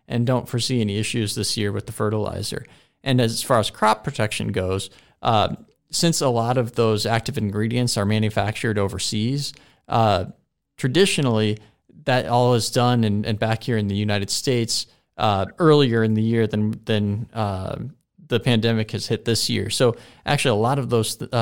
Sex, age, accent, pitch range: male, 40-59, American, 105-120 Hz